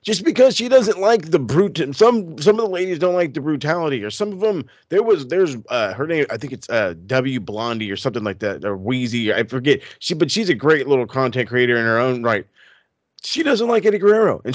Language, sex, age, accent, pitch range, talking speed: English, male, 30-49, American, 130-195 Hz, 240 wpm